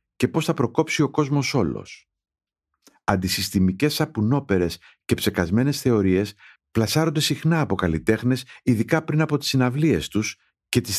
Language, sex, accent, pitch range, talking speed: Greek, male, native, 95-130 Hz, 130 wpm